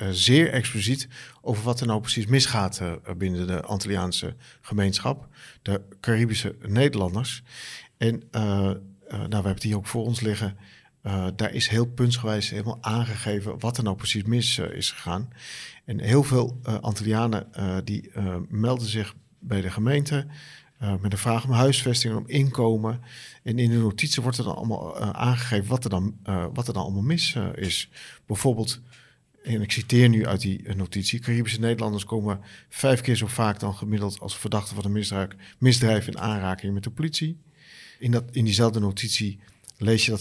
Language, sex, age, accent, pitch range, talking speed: Dutch, male, 50-69, Dutch, 100-125 Hz, 180 wpm